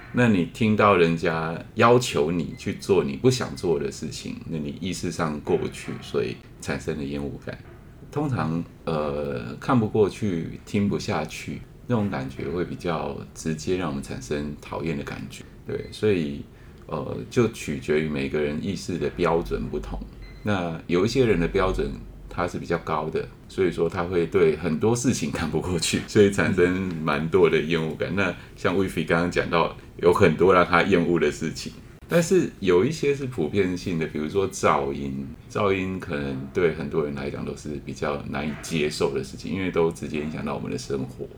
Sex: male